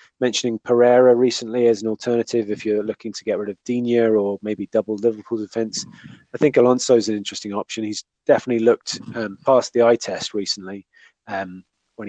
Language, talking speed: English, 185 wpm